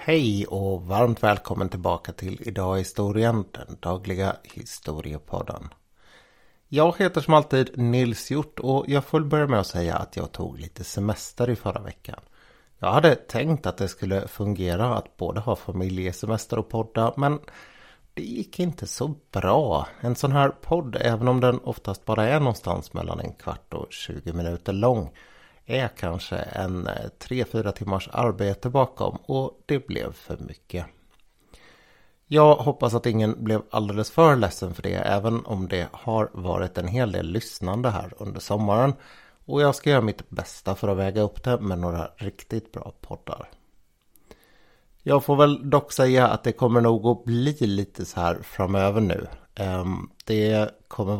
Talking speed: 160 wpm